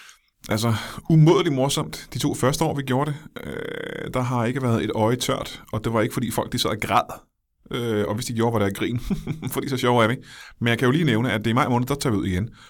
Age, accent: 20-39, native